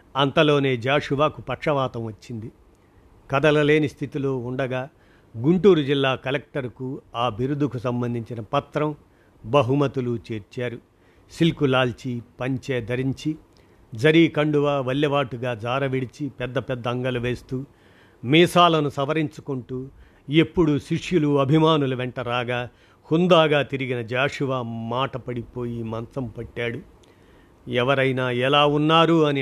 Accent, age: native, 50-69